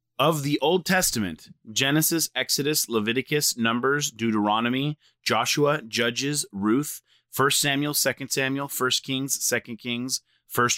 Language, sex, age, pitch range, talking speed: English, male, 30-49, 105-135 Hz, 115 wpm